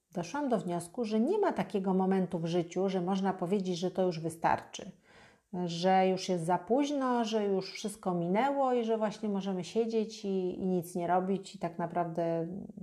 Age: 40-59